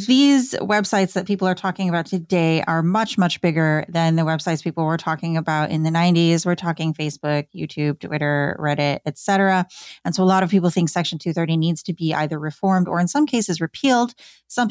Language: English